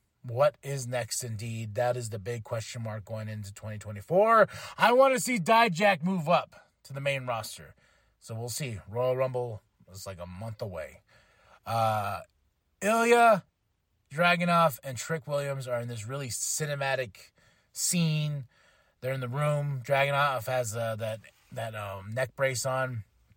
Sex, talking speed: male, 150 wpm